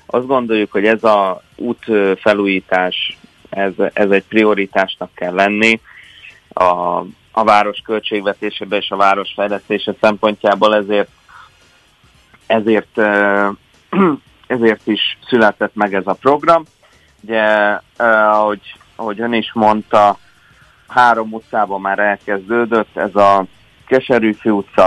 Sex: male